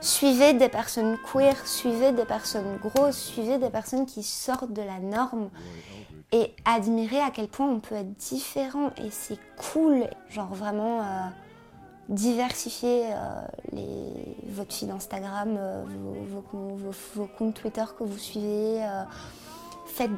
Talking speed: 145 wpm